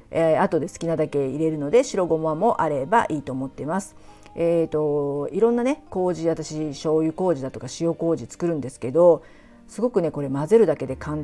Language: Japanese